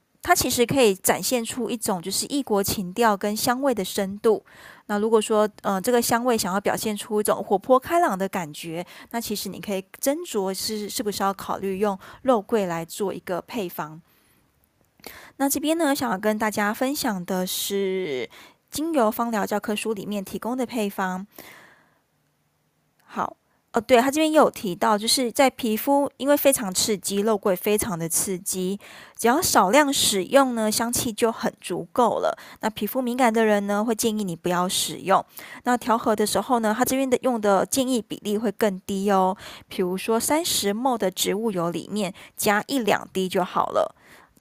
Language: Chinese